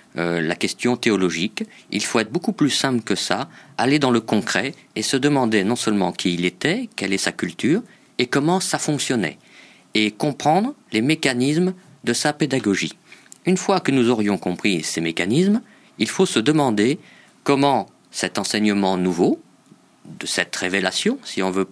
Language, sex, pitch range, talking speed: French, male, 95-150 Hz, 170 wpm